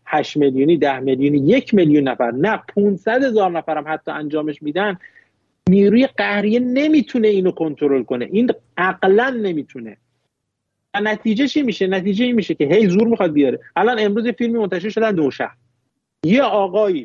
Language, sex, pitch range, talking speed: Persian, male, 145-220 Hz, 155 wpm